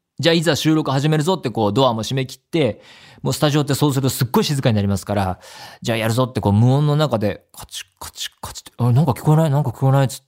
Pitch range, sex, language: 100-150 Hz, male, Japanese